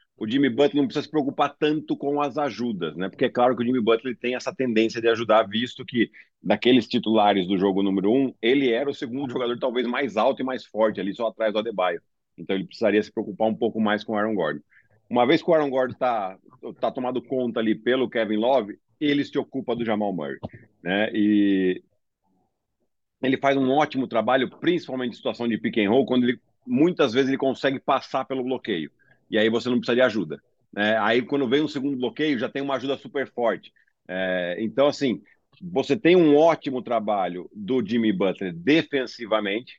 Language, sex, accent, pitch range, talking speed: Portuguese, male, Brazilian, 110-140 Hz, 205 wpm